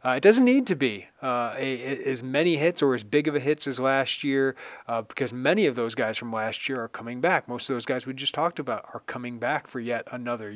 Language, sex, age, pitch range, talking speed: English, male, 30-49, 125-150 Hz, 255 wpm